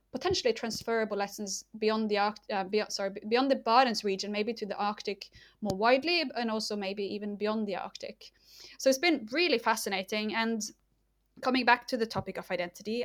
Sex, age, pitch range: female, 20-39, 205-245 Hz